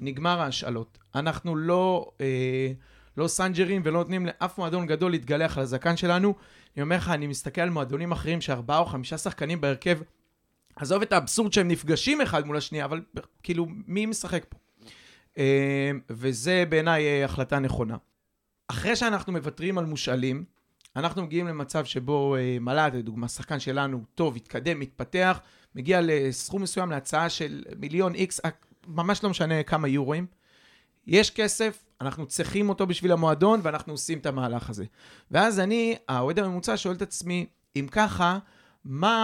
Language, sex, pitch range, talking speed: Hebrew, male, 140-190 Hz, 150 wpm